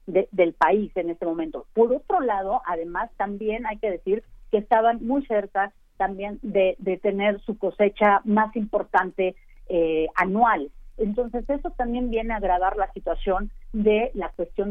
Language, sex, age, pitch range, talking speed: Spanish, female, 40-59, 180-225 Hz, 160 wpm